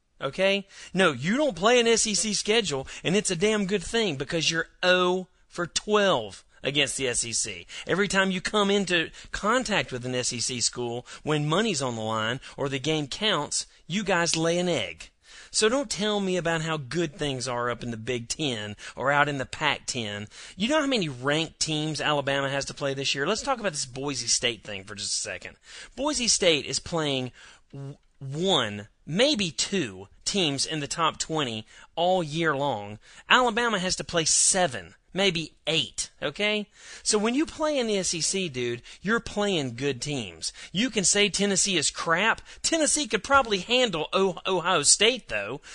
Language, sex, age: English, male, 40-59